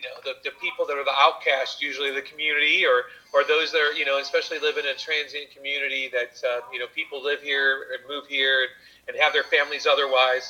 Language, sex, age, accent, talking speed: English, male, 30-49, American, 225 wpm